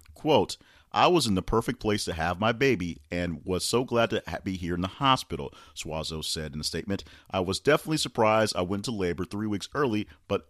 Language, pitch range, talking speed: English, 85-105 Hz, 215 wpm